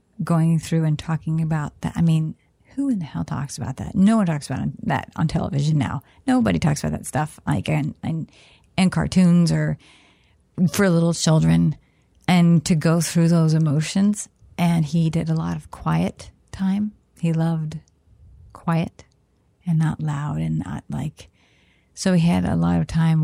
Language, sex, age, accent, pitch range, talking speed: English, female, 40-59, American, 145-180 Hz, 175 wpm